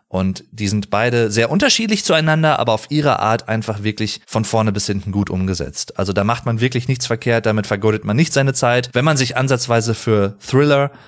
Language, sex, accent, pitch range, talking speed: German, male, German, 110-145 Hz, 205 wpm